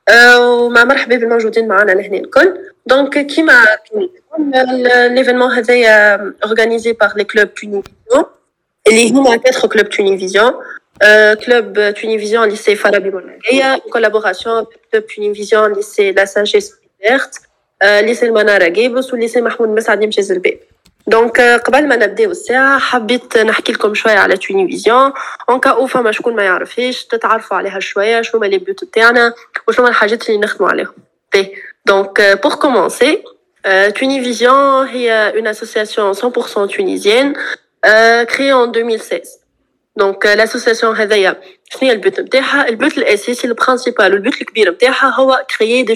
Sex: female